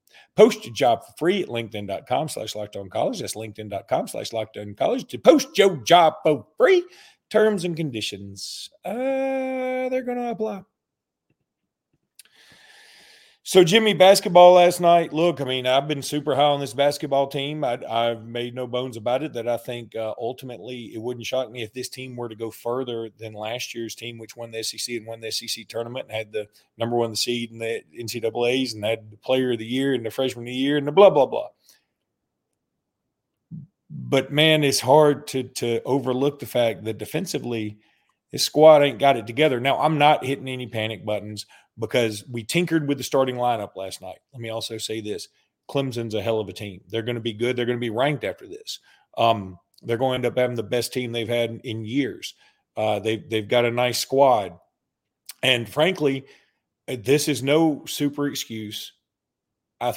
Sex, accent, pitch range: male, American, 115-145 Hz